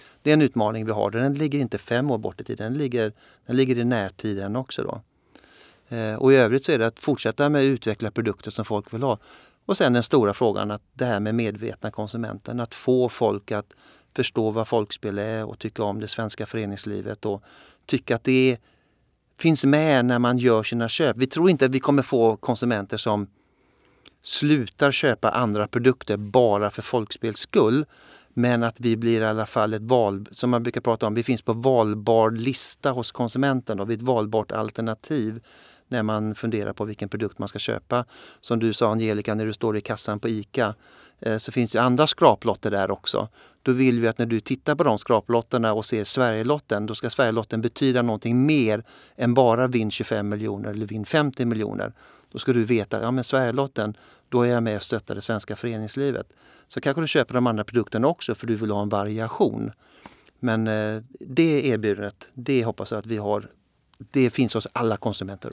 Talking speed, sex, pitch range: 200 wpm, male, 110-125 Hz